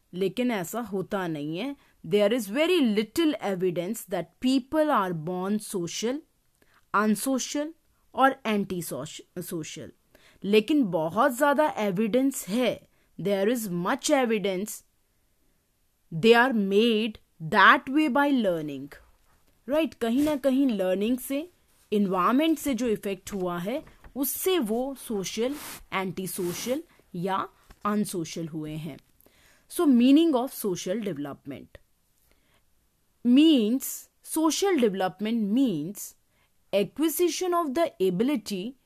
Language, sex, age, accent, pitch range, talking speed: English, female, 30-49, Indian, 190-275 Hz, 105 wpm